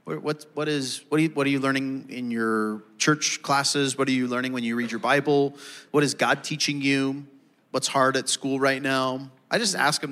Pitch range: 120-145 Hz